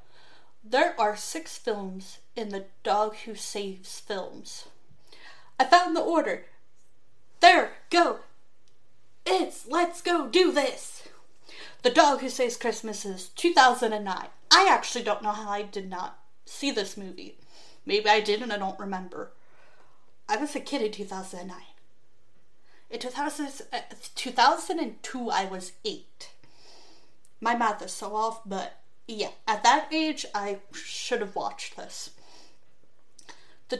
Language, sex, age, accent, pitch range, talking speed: English, female, 30-49, American, 205-290 Hz, 130 wpm